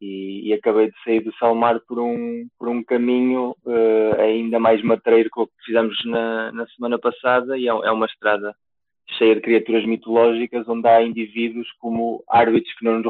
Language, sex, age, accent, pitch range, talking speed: Portuguese, male, 20-39, Portuguese, 95-115 Hz, 180 wpm